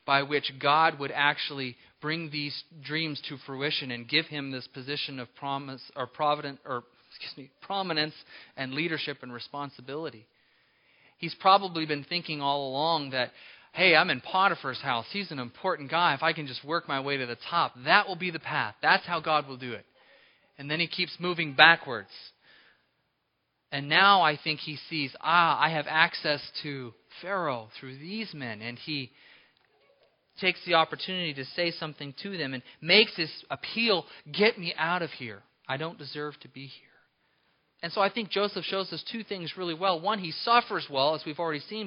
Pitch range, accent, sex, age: 140-190 Hz, American, male, 30-49